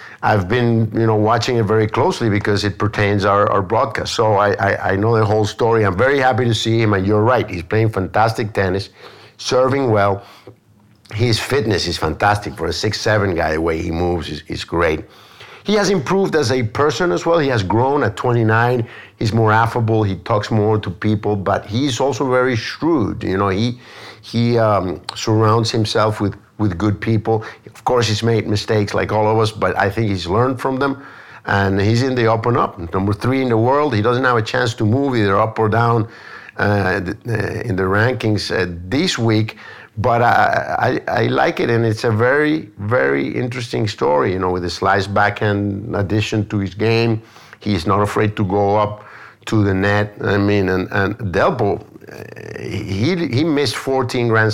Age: 50-69